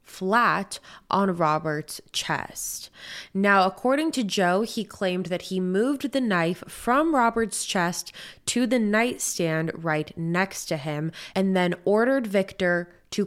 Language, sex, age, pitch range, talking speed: English, female, 20-39, 170-230 Hz, 135 wpm